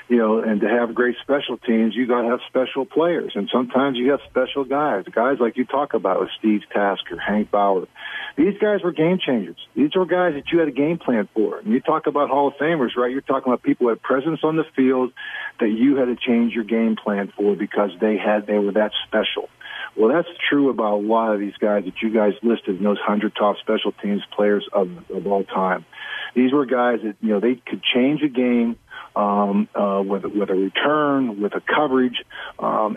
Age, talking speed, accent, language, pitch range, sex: 50-69, 225 wpm, American, English, 105-130 Hz, male